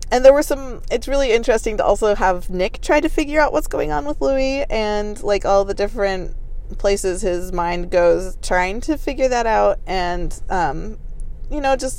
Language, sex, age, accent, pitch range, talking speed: English, female, 30-49, American, 180-250 Hz, 195 wpm